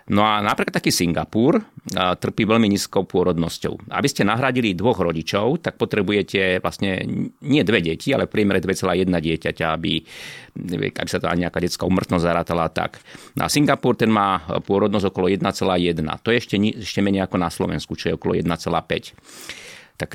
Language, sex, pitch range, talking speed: Slovak, male, 90-110 Hz, 160 wpm